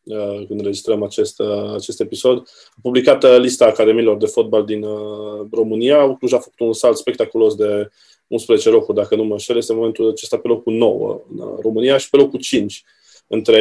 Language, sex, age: Romanian, male, 20-39